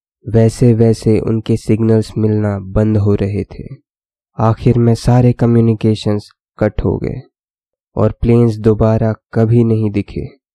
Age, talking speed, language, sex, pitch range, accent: 20-39, 125 wpm, Hindi, male, 105-120 Hz, native